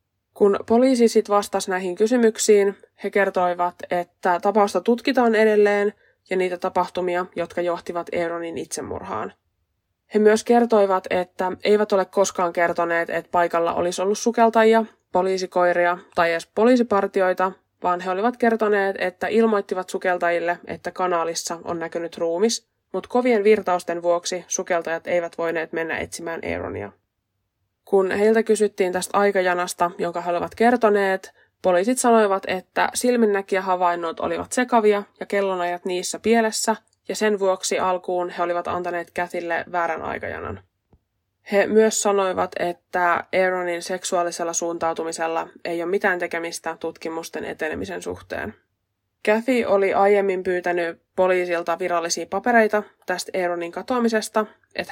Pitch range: 170-205 Hz